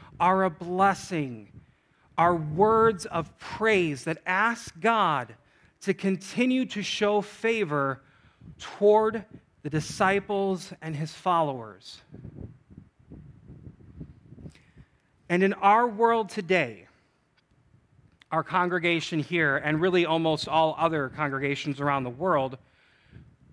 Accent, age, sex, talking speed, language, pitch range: American, 40-59, male, 95 wpm, English, 150-205 Hz